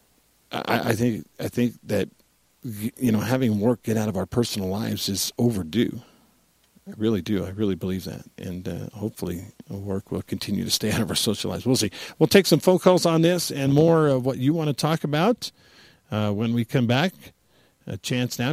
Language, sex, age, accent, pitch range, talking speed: English, male, 50-69, American, 105-135 Hz, 205 wpm